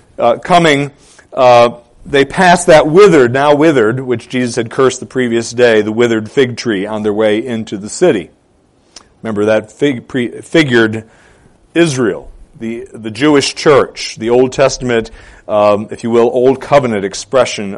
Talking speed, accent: 155 wpm, American